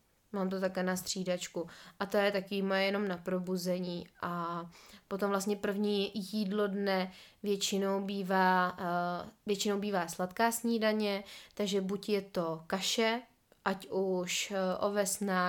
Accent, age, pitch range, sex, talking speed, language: native, 20-39, 185-205 Hz, female, 130 wpm, Czech